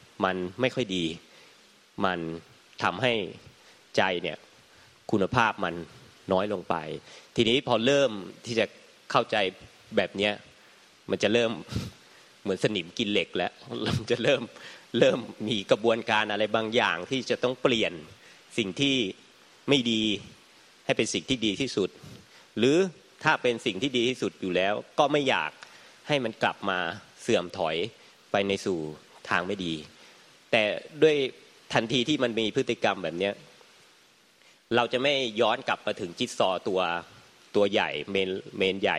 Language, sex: Thai, male